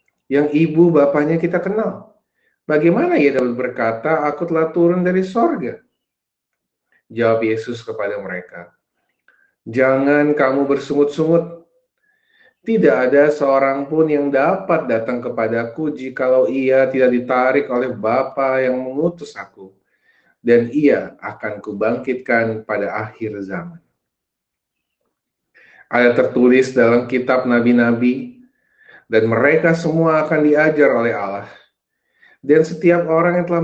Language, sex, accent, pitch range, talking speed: Indonesian, male, native, 120-155 Hz, 110 wpm